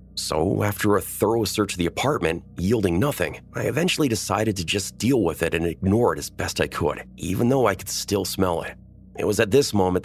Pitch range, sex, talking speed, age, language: 90-115 Hz, male, 220 wpm, 30-49, English